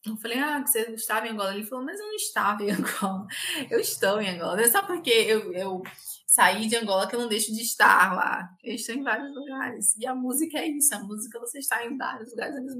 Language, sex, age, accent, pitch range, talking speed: Portuguese, female, 20-39, Brazilian, 205-260 Hz, 255 wpm